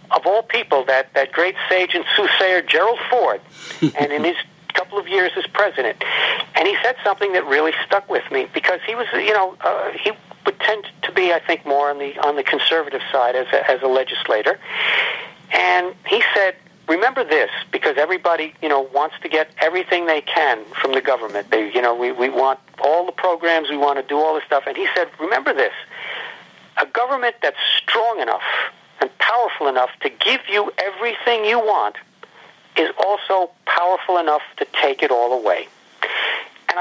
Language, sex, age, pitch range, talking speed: English, male, 50-69, 150-215 Hz, 185 wpm